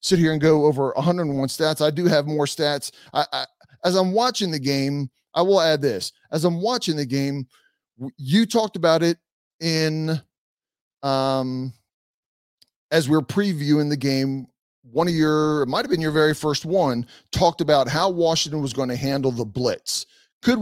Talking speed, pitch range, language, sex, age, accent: 180 wpm, 140-195 Hz, English, male, 30-49, American